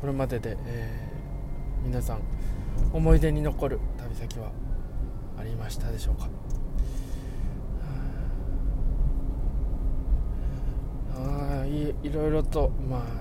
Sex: male